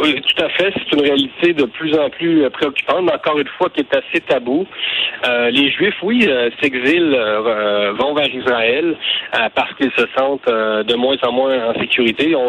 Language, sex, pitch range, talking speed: French, male, 120-170 Hz, 205 wpm